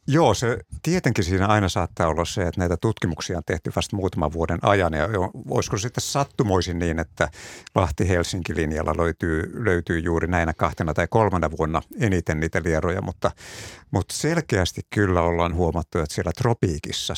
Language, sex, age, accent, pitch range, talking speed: Finnish, male, 50-69, native, 85-105 Hz, 155 wpm